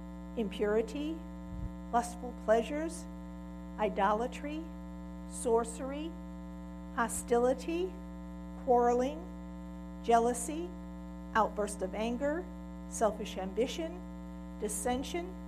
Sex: female